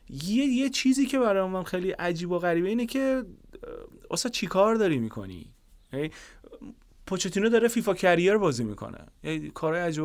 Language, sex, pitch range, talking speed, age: Persian, male, 130-175 Hz, 145 wpm, 30-49